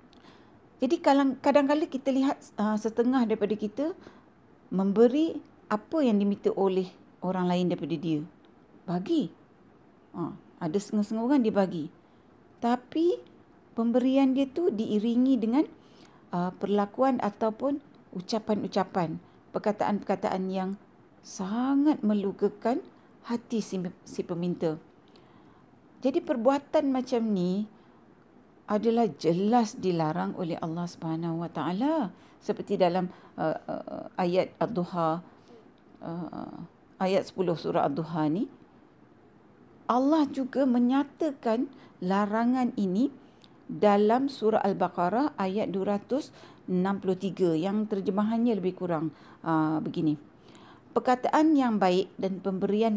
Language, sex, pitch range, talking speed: Malay, female, 185-260 Hz, 90 wpm